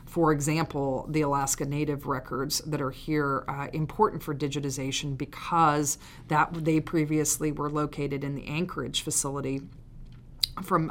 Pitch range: 140-160 Hz